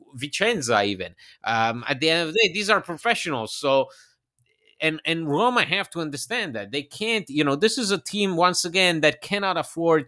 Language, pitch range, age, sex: English, 125-165 Hz, 30-49, male